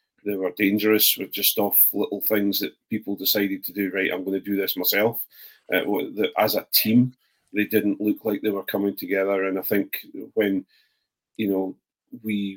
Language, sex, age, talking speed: English, male, 40-59, 185 wpm